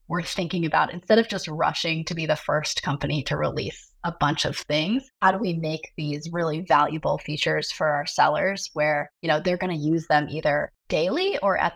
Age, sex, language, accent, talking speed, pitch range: 20-39, female, English, American, 210 wpm, 155-200 Hz